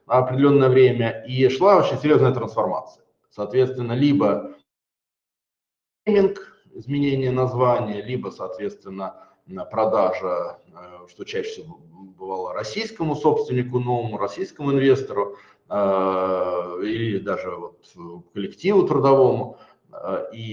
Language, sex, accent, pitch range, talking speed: Russian, male, native, 105-145 Hz, 90 wpm